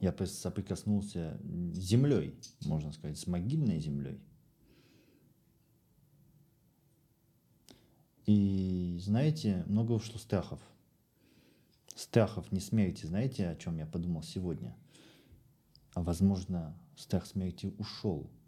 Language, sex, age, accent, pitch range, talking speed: Russian, male, 40-59, native, 90-115 Hz, 85 wpm